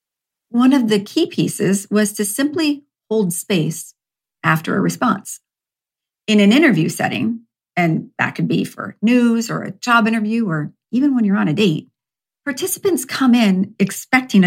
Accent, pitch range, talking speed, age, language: American, 180-235 Hz, 160 wpm, 50-69, English